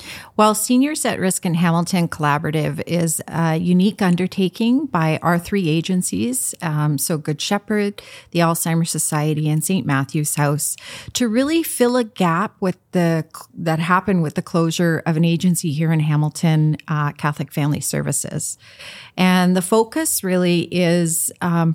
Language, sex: English, female